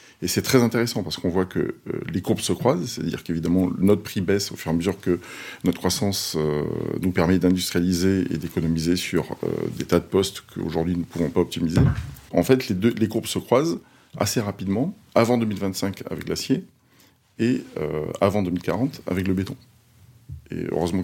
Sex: male